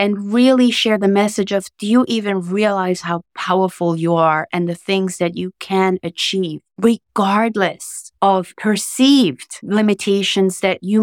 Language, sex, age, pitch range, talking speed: English, female, 30-49, 185-225 Hz, 145 wpm